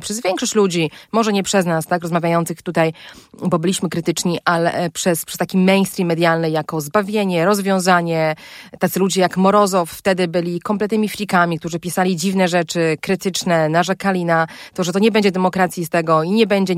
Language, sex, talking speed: Polish, female, 170 wpm